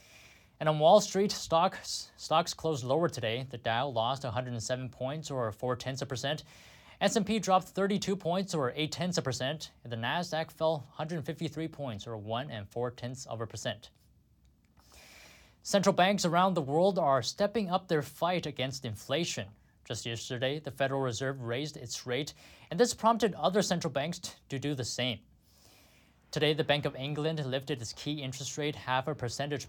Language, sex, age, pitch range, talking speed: English, male, 20-39, 115-155 Hz, 170 wpm